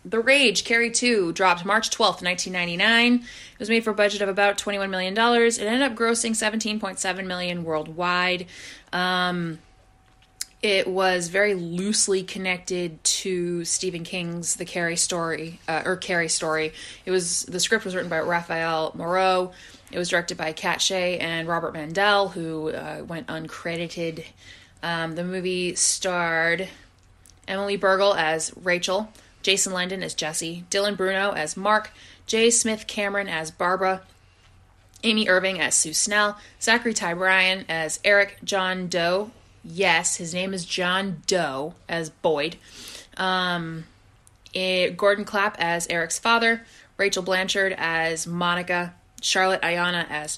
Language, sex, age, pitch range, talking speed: English, female, 20-39, 165-195 Hz, 145 wpm